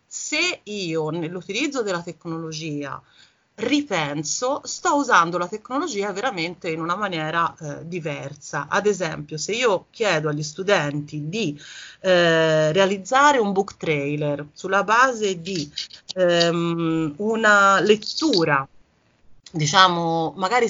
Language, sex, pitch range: Italian, female, 160-200 Hz